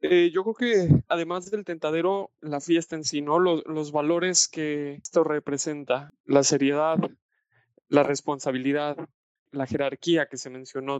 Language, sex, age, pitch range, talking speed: Spanish, male, 20-39, 140-165 Hz, 145 wpm